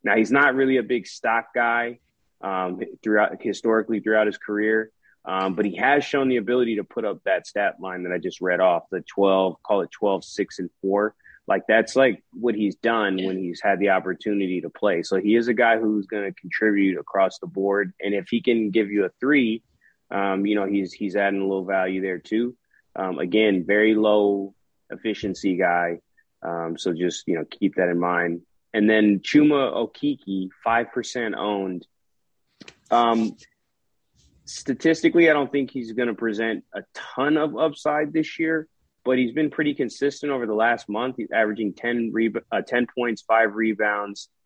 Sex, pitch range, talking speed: male, 100-125 Hz, 190 wpm